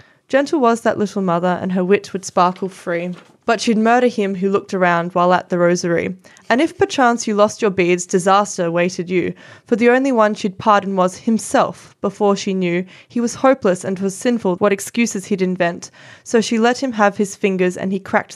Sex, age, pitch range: female, 20-39, 185-220 Hz